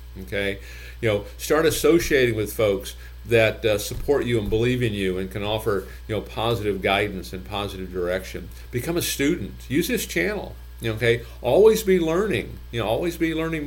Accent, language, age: American, English, 50-69